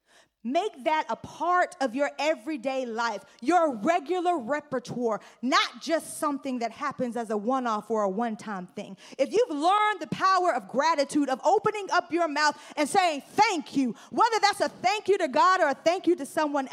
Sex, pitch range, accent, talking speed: female, 270-380 Hz, American, 185 wpm